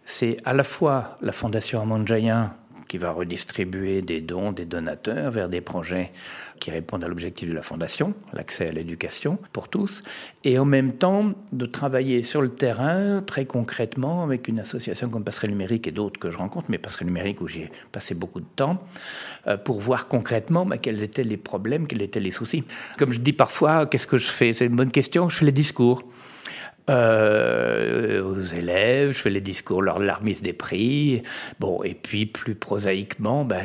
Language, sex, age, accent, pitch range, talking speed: French, male, 60-79, French, 90-130 Hz, 190 wpm